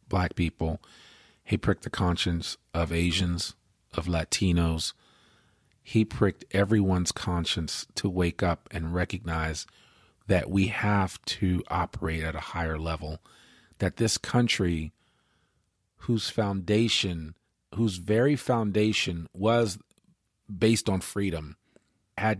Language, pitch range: English, 85-115 Hz